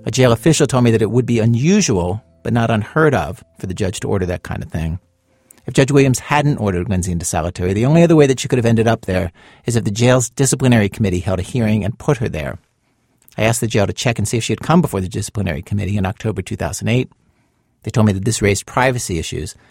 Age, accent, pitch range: 50-69, American, 100-120 Hz